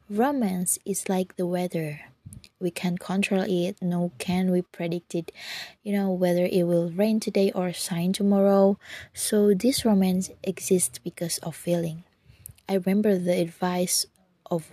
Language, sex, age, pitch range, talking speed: Indonesian, female, 20-39, 170-195 Hz, 145 wpm